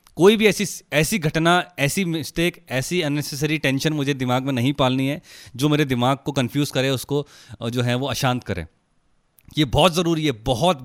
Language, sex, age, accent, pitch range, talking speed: Hindi, male, 30-49, native, 115-145 Hz, 185 wpm